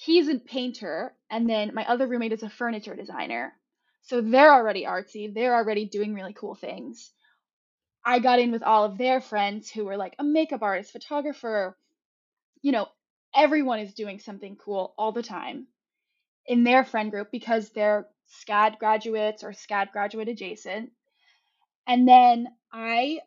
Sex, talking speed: female, 160 wpm